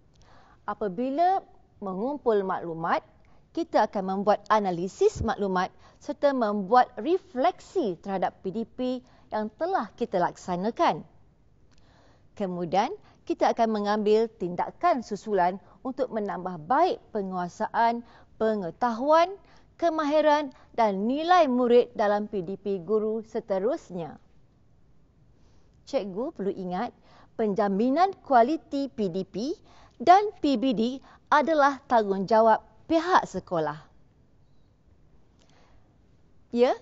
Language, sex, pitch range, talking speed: Malay, female, 195-275 Hz, 80 wpm